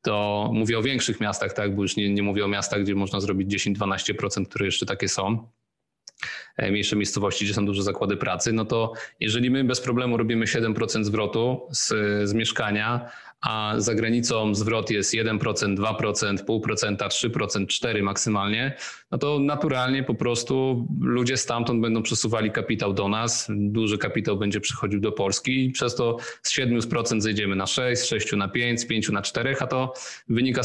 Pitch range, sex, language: 105-120 Hz, male, Polish